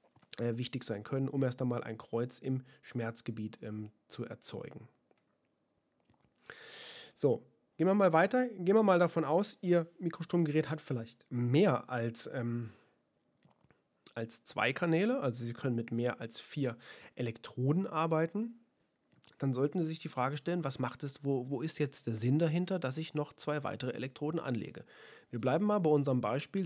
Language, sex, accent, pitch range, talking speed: German, male, German, 120-155 Hz, 160 wpm